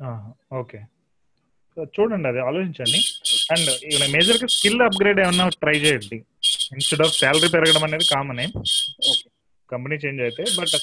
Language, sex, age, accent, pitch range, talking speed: Telugu, male, 30-49, native, 135-170 Hz, 115 wpm